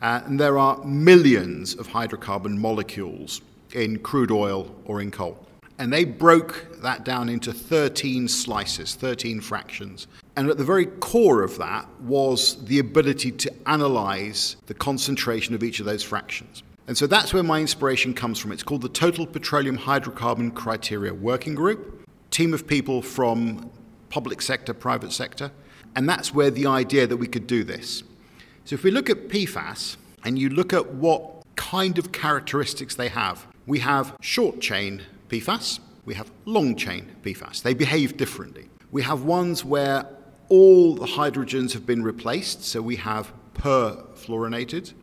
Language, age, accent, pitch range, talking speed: English, 50-69, British, 115-155 Hz, 160 wpm